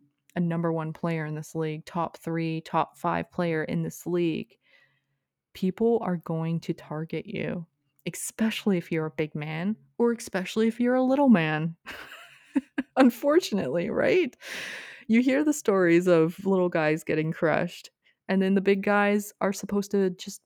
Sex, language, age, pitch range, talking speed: female, English, 20-39, 160-205 Hz, 160 wpm